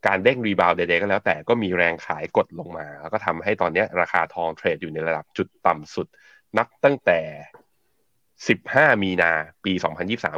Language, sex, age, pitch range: Thai, male, 20-39, 85-110 Hz